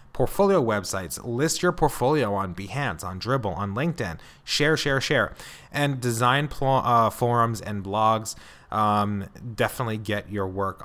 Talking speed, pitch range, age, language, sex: 145 wpm, 105-145 Hz, 30-49, English, male